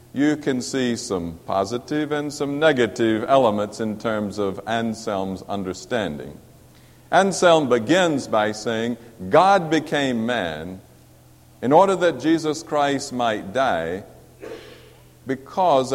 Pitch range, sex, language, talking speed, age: 105-155 Hz, male, English, 110 wpm, 50-69